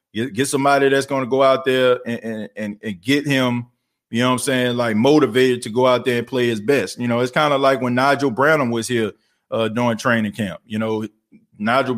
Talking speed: 235 wpm